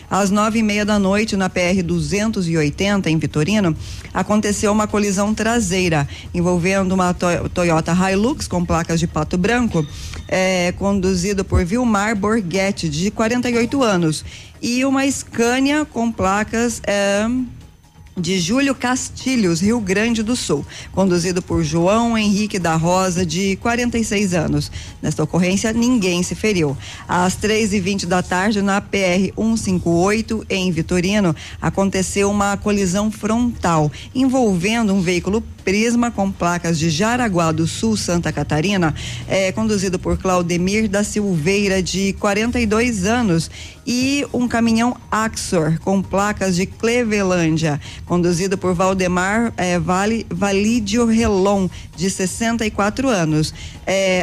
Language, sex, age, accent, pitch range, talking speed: Portuguese, female, 20-39, Brazilian, 180-220 Hz, 120 wpm